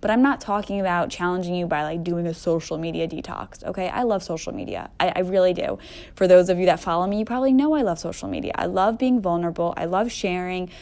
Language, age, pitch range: English, 10-29, 175-210 Hz